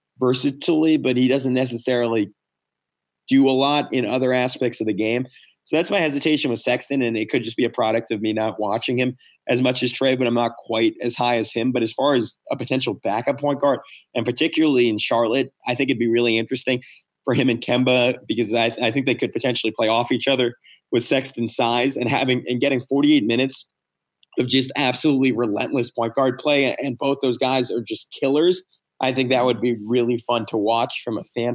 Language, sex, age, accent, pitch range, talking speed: English, male, 30-49, American, 120-140 Hz, 215 wpm